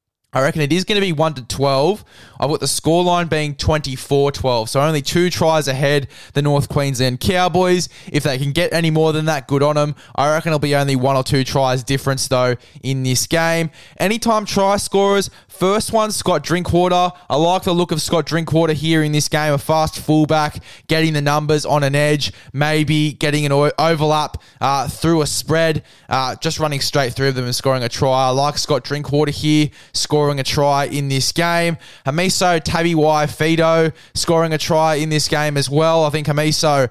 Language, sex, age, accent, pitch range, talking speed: English, male, 10-29, Australian, 140-170 Hz, 190 wpm